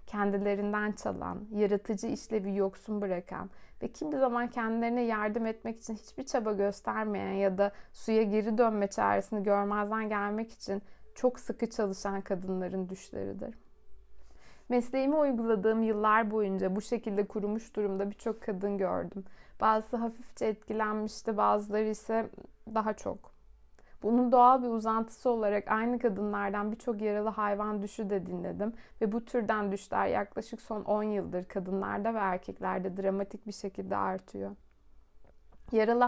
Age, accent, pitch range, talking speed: 60-79, native, 195-225 Hz, 130 wpm